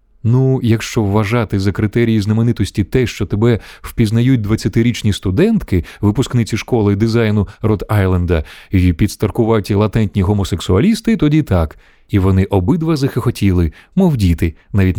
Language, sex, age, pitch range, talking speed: Ukrainian, male, 30-49, 95-125 Hz, 120 wpm